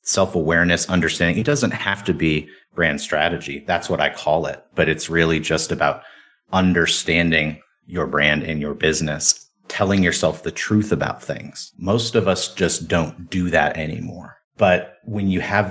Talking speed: 165 wpm